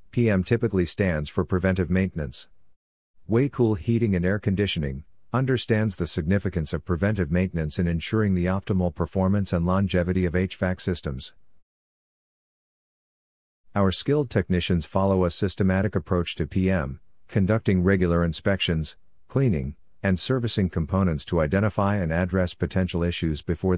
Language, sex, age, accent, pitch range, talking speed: English, male, 50-69, American, 85-100 Hz, 125 wpm